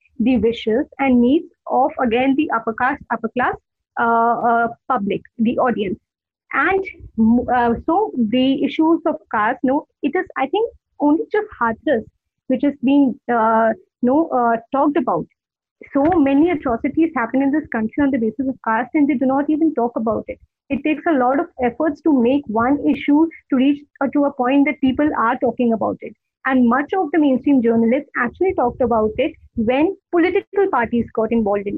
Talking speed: 190 wpm